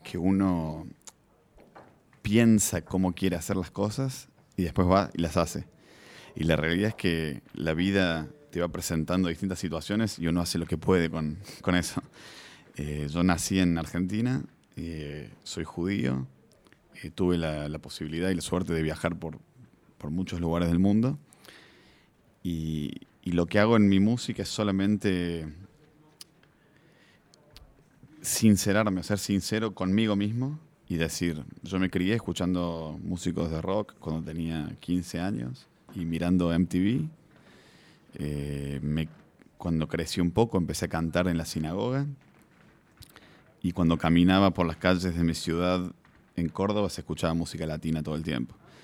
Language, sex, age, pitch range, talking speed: French, male, 30-49, 80-100 Hz, 145 wpm